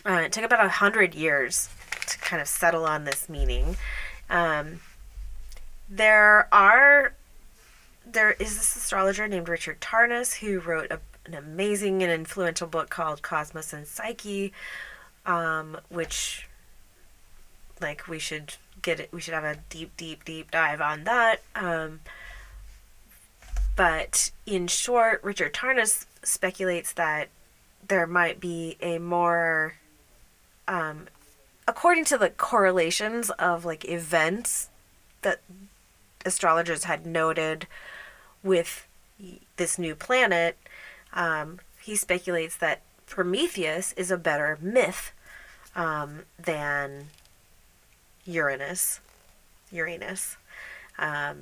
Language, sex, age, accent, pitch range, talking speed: English, female, 20-39, American, 155-190 Hz, 110 wpm